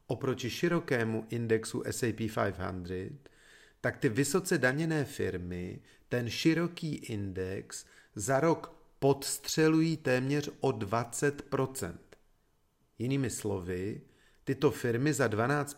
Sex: male